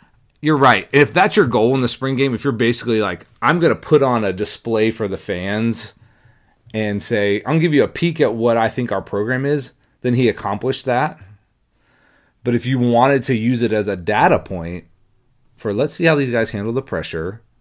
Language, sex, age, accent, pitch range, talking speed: English, male, 30-49, American, 100-130 Hz, 220 wpm